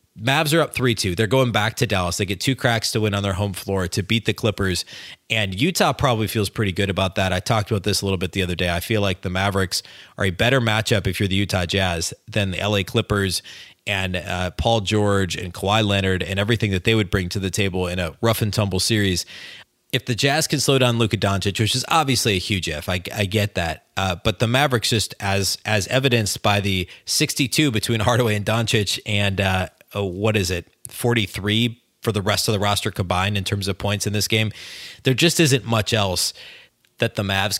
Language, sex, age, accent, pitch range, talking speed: English, male, 30-49, American, 95-115 Hz, 230 wpm